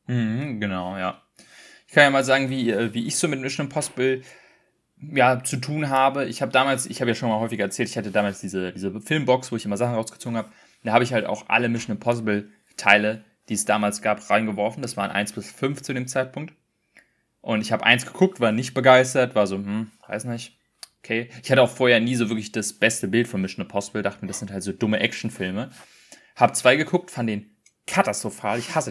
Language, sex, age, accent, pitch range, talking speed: German, male, 20-39, German, 110-135 Hz, 220 wpm